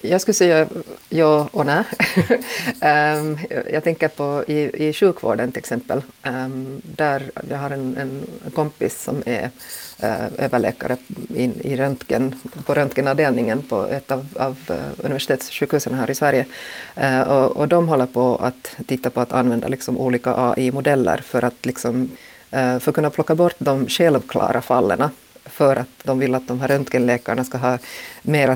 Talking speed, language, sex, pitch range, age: 140 wpm, Swedish, female, 125-140 Hz, 40-59